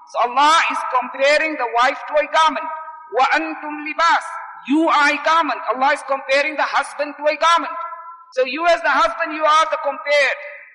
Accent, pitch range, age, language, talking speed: Indian, 260-315 Hz, 50-69, English, 180 wpm